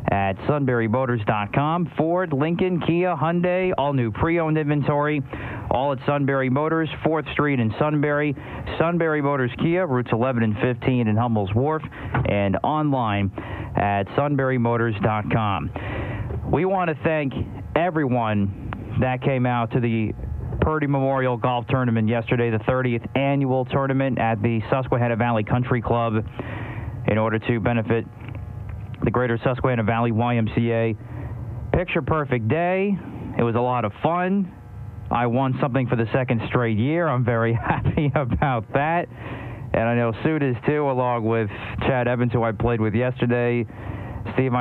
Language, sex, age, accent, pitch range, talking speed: English, male, 40-59, American, 110-135 Hz, 140 wpm